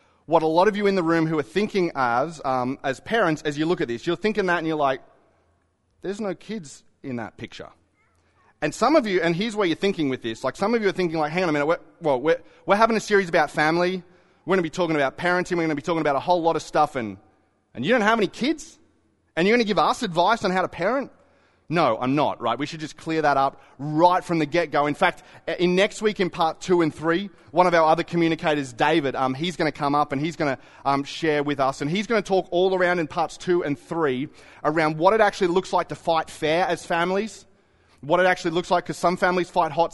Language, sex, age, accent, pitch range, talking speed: English, male, 30-49, Australian, 145-180 Hz, 265 wpm